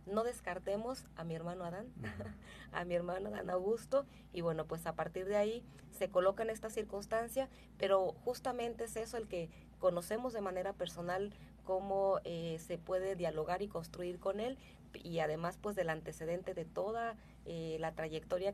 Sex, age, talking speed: female, 30-49, 170 wpm